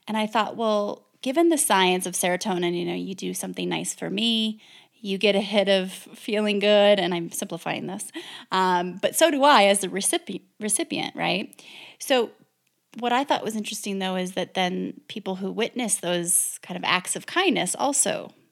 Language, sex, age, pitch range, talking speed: English, female, 30-49, 185-225 Hz, 190 wpm